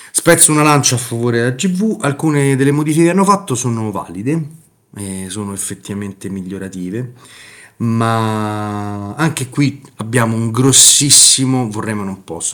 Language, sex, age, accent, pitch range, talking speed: Italian, male, 30-49, native, 95-120 Hz, 135 wpm